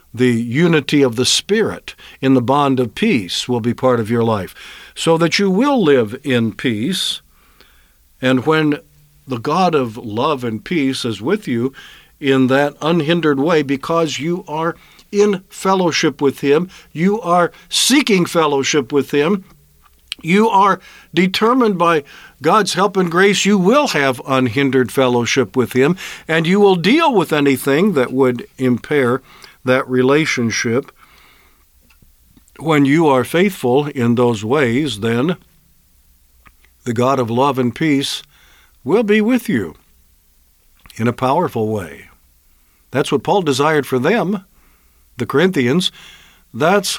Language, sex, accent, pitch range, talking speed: English, male, American, 120-175 Hz, 140 wpm